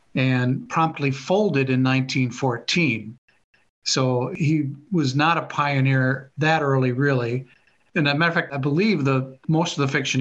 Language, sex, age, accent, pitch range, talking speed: English, male, 50-69, American, 125-155 Hz, 155 wpm